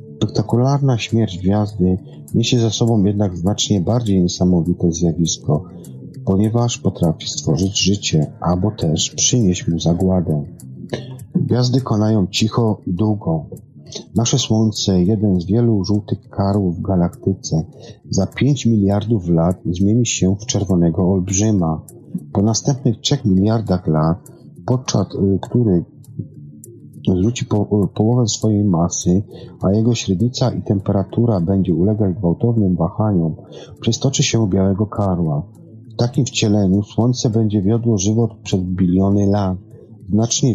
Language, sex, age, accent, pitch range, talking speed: Polish, male, 40-59, native, 90-115 Hz, 115 wpm